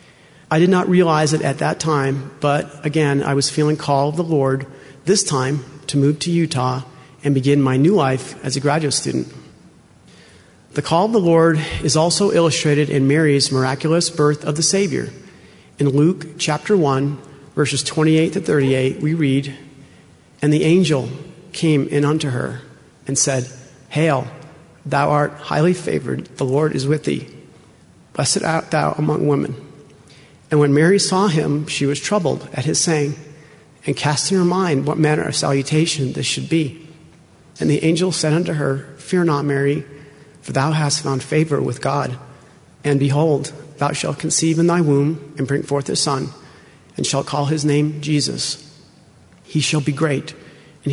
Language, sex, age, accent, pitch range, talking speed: English, male, 40-59, American, 140-155 Hz, 170 wpm